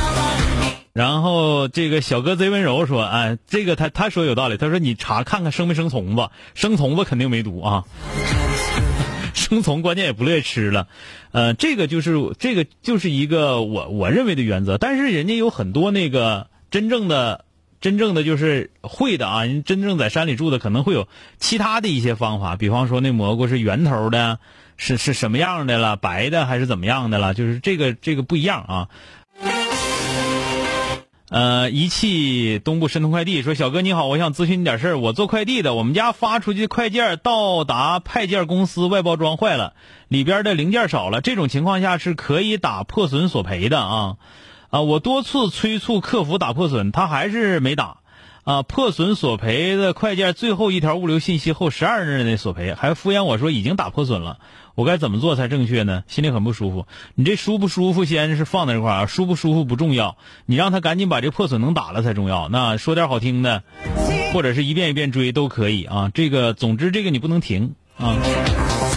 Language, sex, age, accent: Chinese, male, 30-49, native